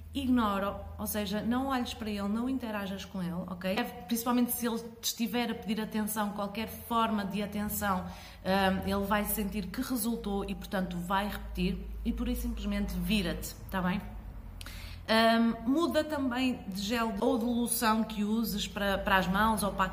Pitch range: 195-235 Hz